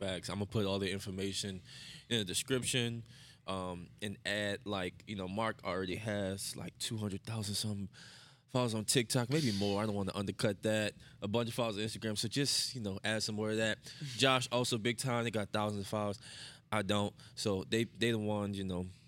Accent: American